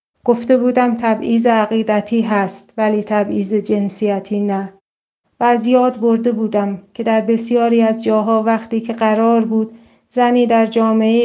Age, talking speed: 40-59, 140 wpm